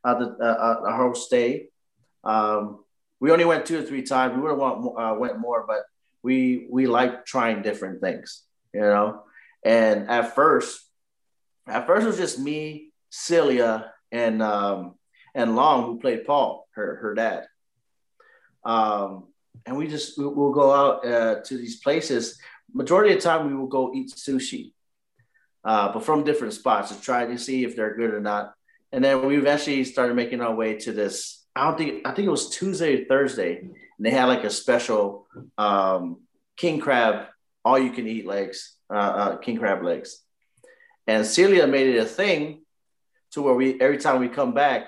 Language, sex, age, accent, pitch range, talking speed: English, male, 30-49, American, 110-135 Hz, 185 wpm